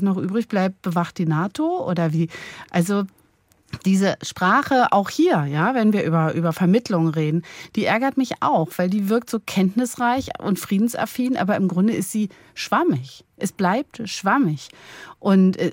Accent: German